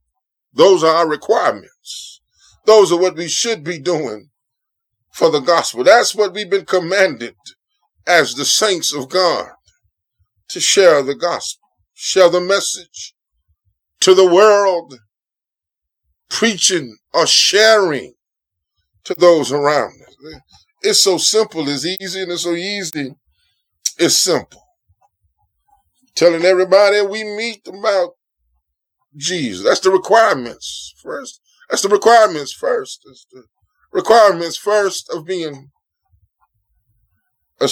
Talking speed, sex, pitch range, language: 115 wpm, male, 140-230 Hz, English